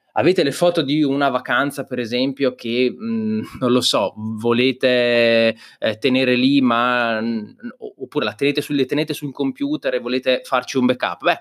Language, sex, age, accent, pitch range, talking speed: Italian, male, 20-39, native, 120-195 Hz, 165 wpm